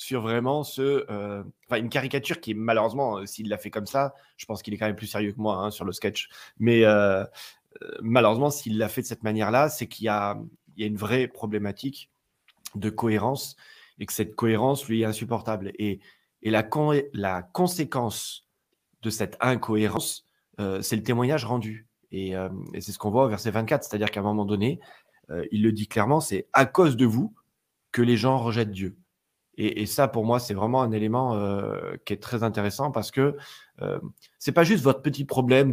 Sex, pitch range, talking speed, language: male, 105-135 Hz, 210 wpm, French